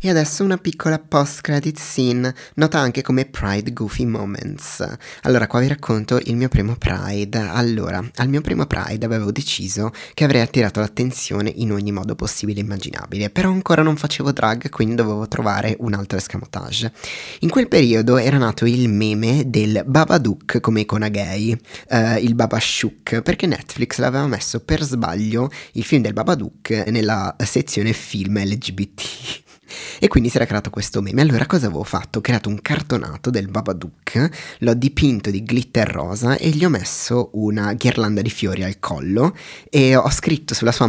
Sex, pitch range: male, 110-135 Hz